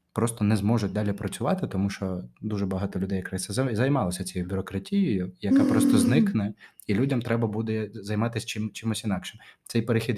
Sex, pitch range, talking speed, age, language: male, 105-140 Hz, 155 wpm, 20-39, Ukrainian